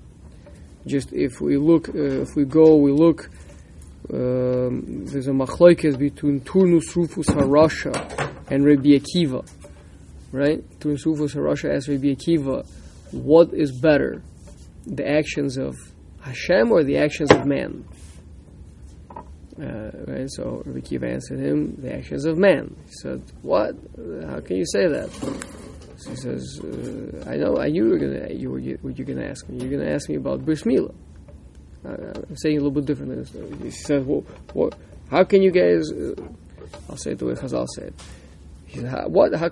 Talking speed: 170 wpm